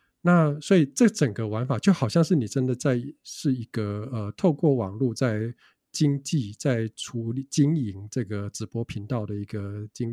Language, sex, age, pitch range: Chinese, male, 50-69, 110-135 Hz